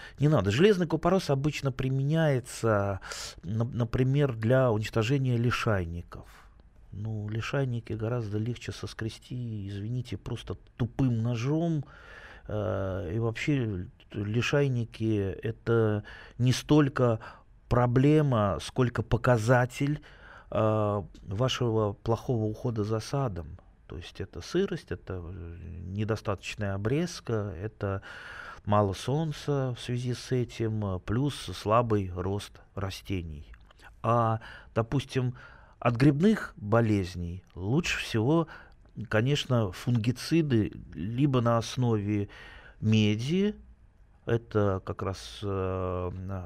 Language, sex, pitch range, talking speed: Russian, male, 100-130 Hz, 90 wpm